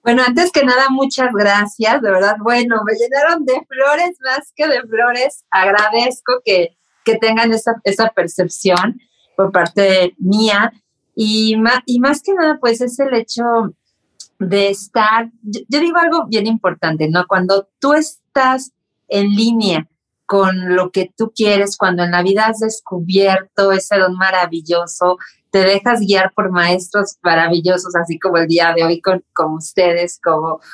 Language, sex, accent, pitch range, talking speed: Spanish, female, Mexican, 180-235 Hz, 160 wpm